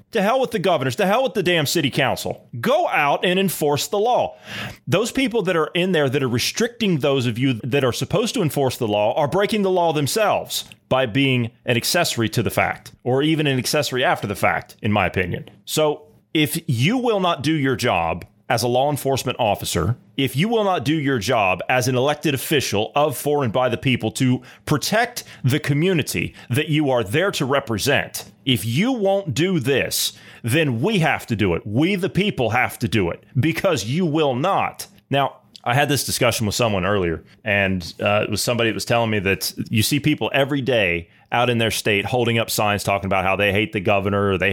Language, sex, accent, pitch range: English, male, American, 105-150 Hz